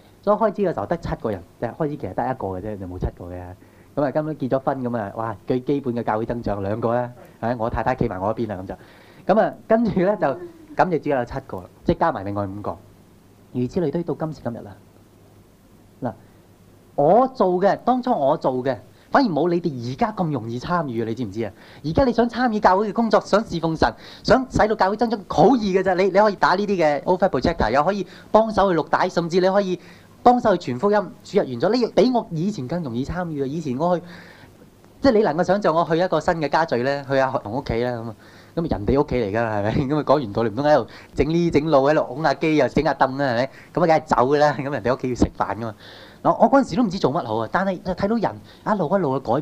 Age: 30-49